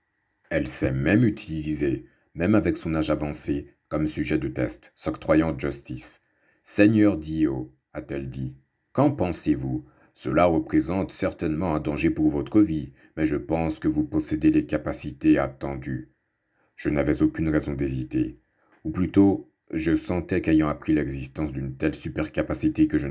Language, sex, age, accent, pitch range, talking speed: French, male, 60-79, French, 70-90 Hz, 145 wpm